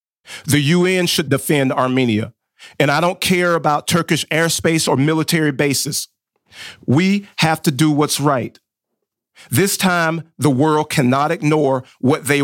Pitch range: 135-165 Hz